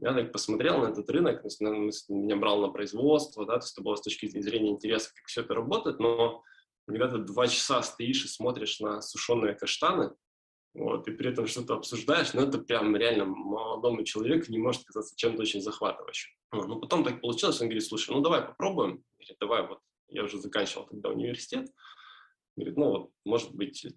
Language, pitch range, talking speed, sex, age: Russian, 105-145 Hz, 190 wpm, male, 20-39